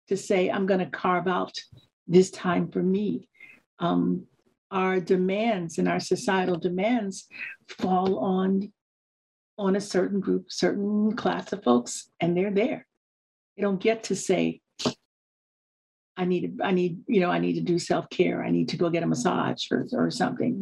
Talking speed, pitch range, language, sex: 170 wpm, 180-210 Hz, English, female